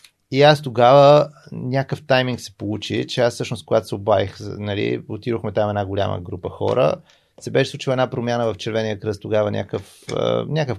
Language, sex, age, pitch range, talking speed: Bulgarian, male, 30-49, 105-130 Hz, 165 wpm